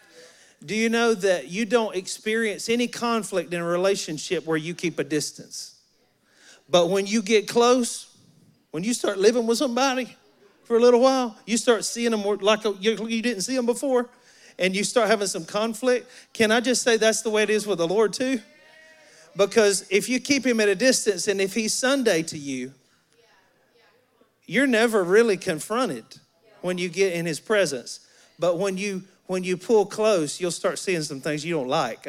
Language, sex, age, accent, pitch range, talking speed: English, male, 40-59, American, 160-230 Hz, 190 wpm